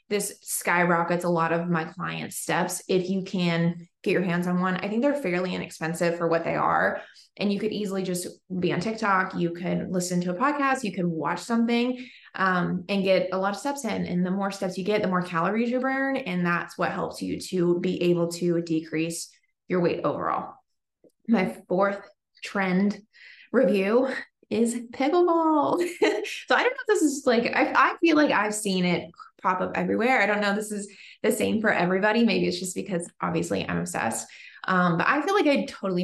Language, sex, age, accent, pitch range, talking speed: English, female, 20-39, American, 175-225 Hz, 205 wpm